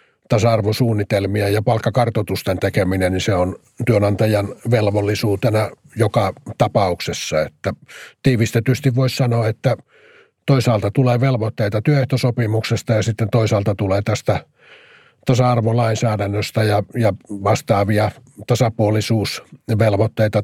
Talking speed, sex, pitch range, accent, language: 90 wpm, male, 100-120 Hz, native, Finnish